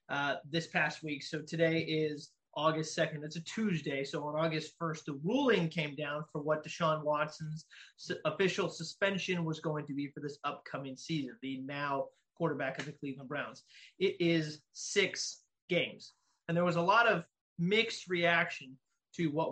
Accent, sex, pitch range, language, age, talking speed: American, male, 150-180 Hz, English, 30-49, 170 wpm